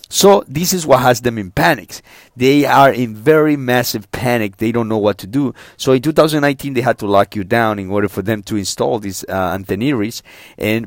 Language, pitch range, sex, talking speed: English, 105-140 Hz, male, 215 wpm